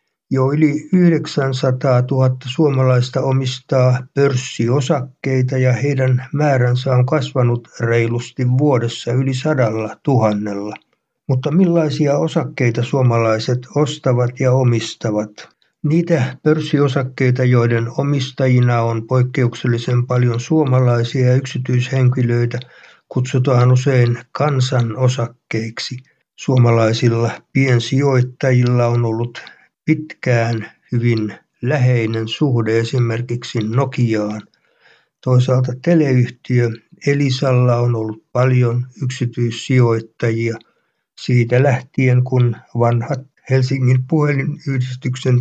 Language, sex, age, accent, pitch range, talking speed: Finnish, male, 60-79, native, 120-135 Hz, 80 wpm